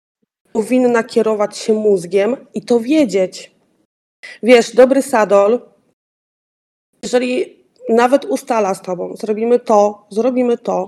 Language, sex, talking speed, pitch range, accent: Polish, female, 105 wpm, 210-255 Hz, native